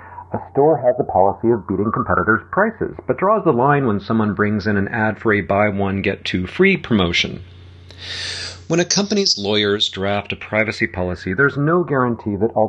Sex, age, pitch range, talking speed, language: male, 40-59, 95-135 Hz, 190 wpm, English